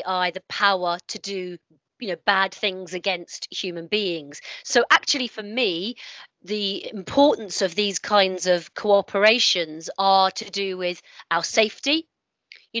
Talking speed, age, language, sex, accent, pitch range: 135 wpm, 30-49, English, female, British, 185-225 Hz